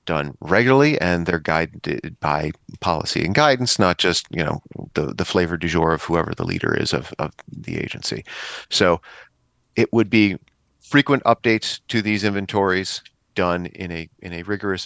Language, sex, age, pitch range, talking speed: English, male, 40-59, 90-115 Hz, 170 wpm